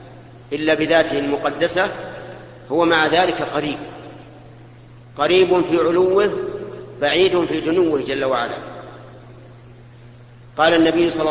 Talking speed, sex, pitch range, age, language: 95 wpm, male, 140-170 Hz, 40-59, Arabic